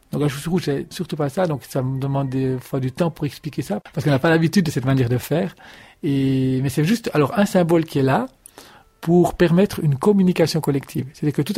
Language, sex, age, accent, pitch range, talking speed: French, male, 40-59, French, 125-165 Hz, 245 wpm